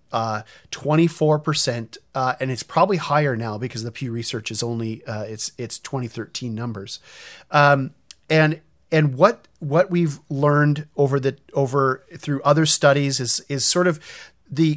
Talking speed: 160 wpm